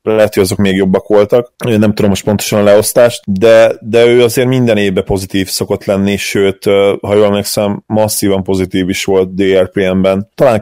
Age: 30-49